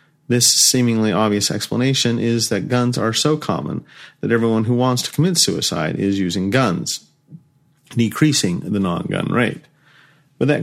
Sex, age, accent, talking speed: male, 40-59, American, 145 wpm